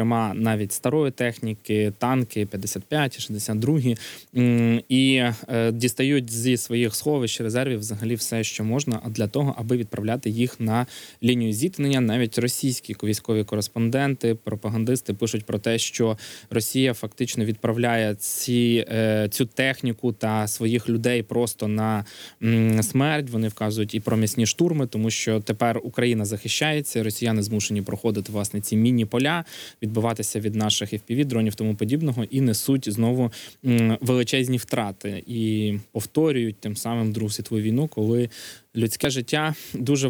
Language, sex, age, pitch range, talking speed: Ukrainian, male, 20-39, 110-125 Hz, 125 wpm